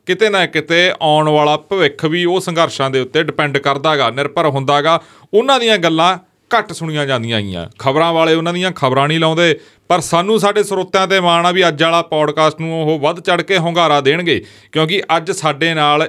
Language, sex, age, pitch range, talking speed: Punjabi, male, 40-59, 145-185 Hz, 185 wpm